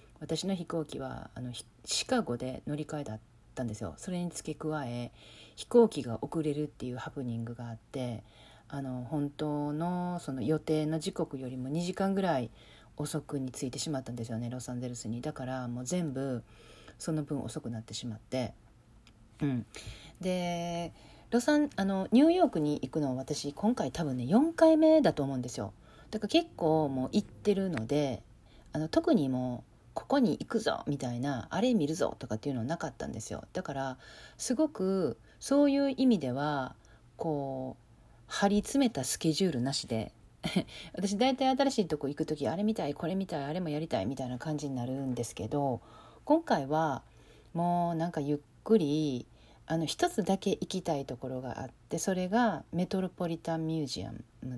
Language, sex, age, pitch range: Japanese, female, 40-59, 125-180 Hz